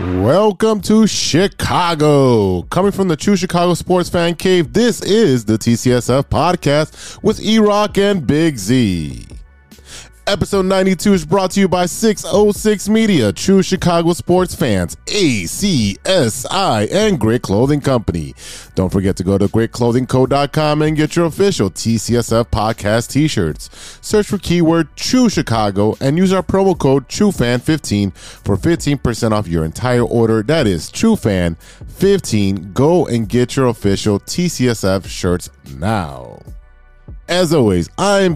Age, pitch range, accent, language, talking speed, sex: 30-49, 105-170 Hz, American, English, 130 wpm, male